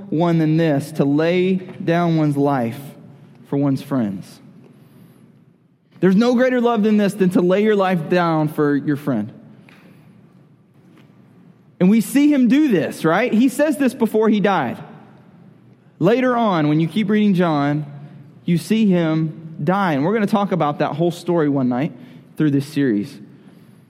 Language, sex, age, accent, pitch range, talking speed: English, male, 20-39, American, 160-195 Hz, 160 wpm